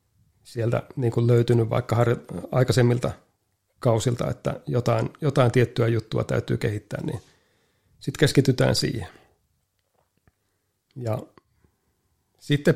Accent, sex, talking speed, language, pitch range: native, male, 90 wpm, Finnish, 115-125 Hz